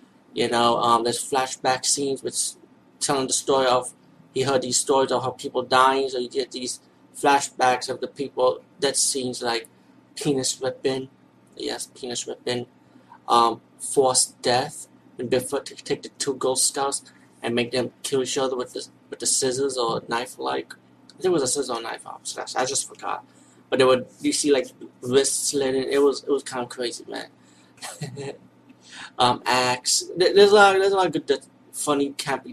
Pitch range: 125-150 Hz